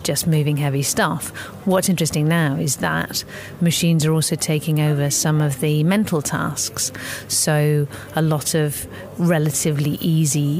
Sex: female